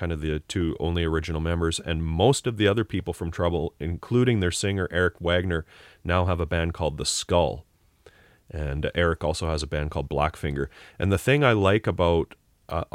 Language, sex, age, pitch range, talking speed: English, male, 30-49, 80-95 Hz, 195 wpm